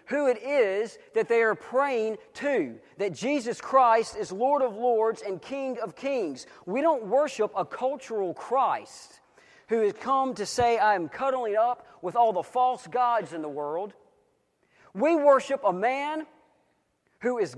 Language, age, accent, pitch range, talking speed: English, 40-59, American, 210-280 Hz, 165 wpm